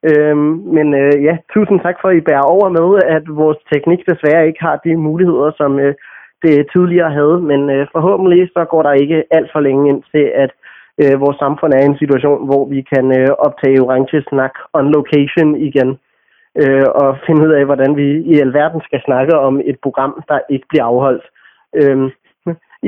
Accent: native